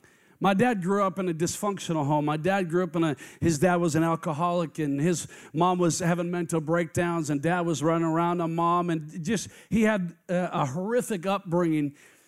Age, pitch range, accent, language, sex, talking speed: 40-59, 165-205 Hz, American, English, male, 200 wpm